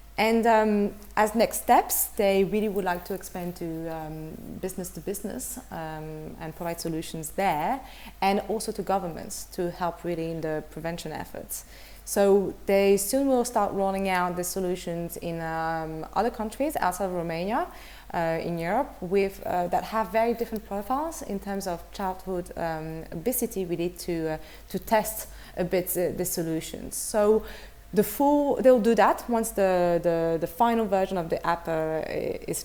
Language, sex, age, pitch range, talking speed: English, female, 30-49, 165-205 Hz, 165 wpm